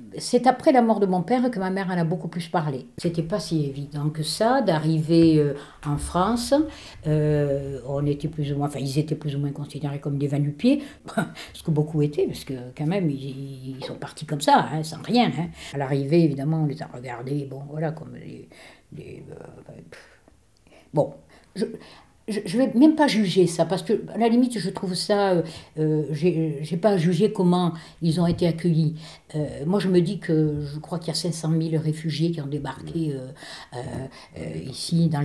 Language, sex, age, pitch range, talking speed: French, female, 60-79, 145-180 Hz, 195 wpm